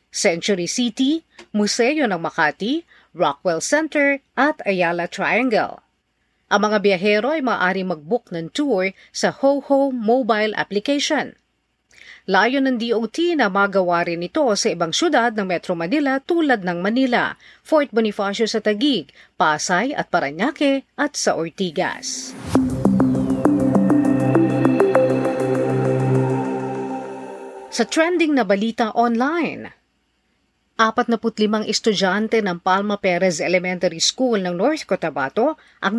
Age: 40-59